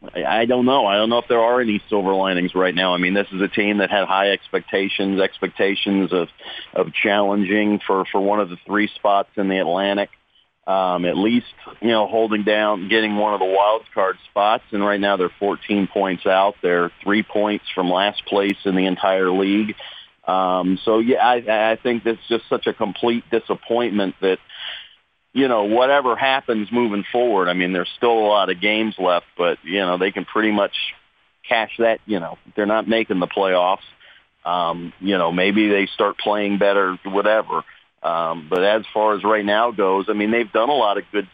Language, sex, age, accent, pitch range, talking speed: English, male, 40-59, American, 95-110 Hz, 200 wpm